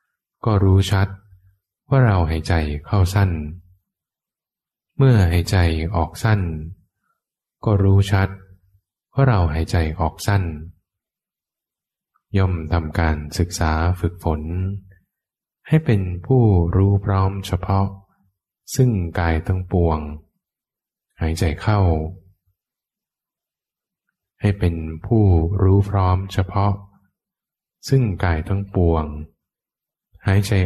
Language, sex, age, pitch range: English, male, 20-39, 85-100 Hz